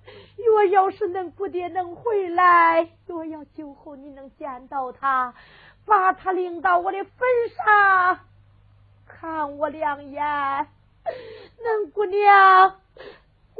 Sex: female